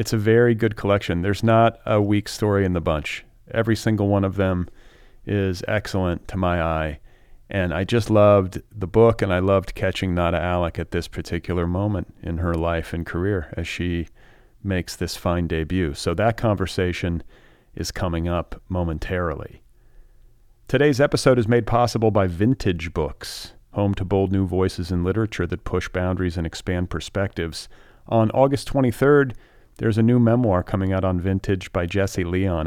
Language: English